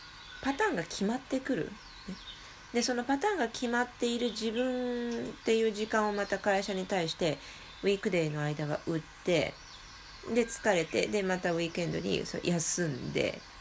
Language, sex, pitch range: Japanese, female, 170-225 Hz